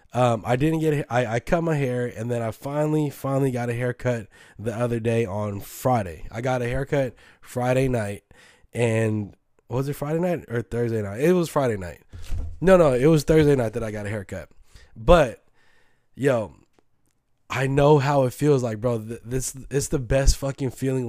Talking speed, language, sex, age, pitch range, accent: 190 wpm, English, male, 20-39, 110-135 Hz, American